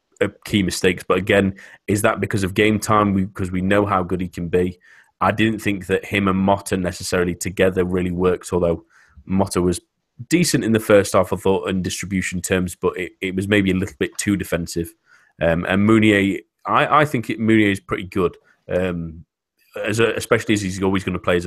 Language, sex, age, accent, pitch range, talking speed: English, male, 30-49, British, 90-100 Hz, 205 wpm